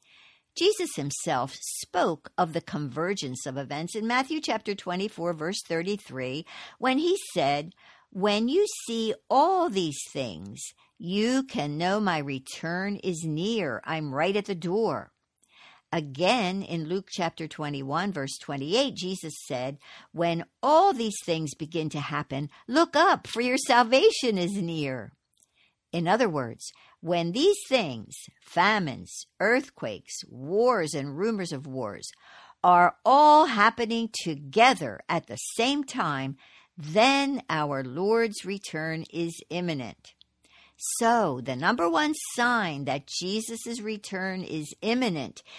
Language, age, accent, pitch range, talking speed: English, 60-79, American, 150-230 Hz, 125 wpm